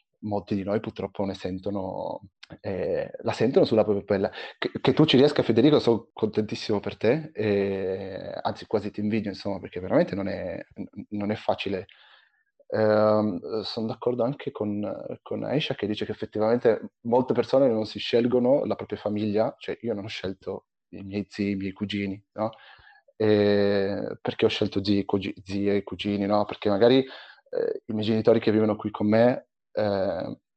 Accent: native